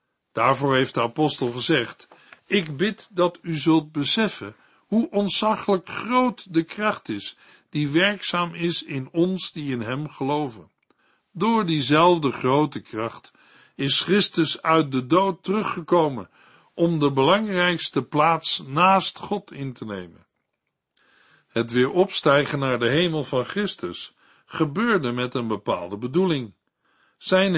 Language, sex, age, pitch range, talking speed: Dutch, male, 60-79, 135-185 Hz, 130 wpm